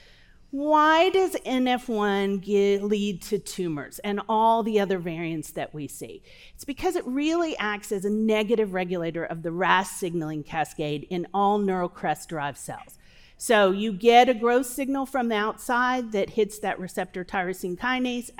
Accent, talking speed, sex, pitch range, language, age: American, 160 wpm, female, 190-250 Hz, English, 40-59